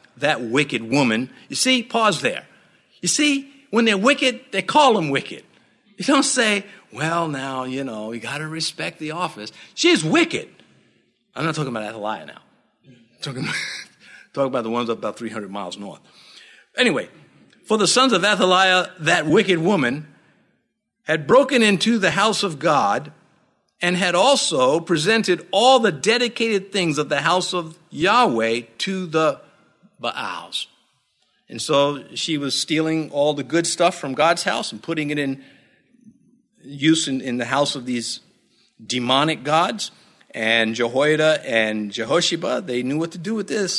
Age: 50-69